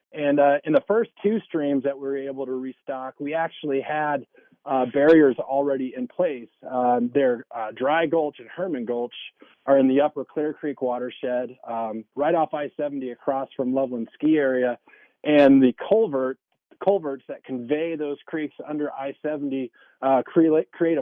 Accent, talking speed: American, 155 wpm